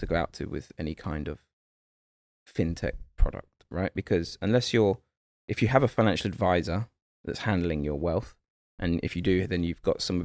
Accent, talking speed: British, 185 wpm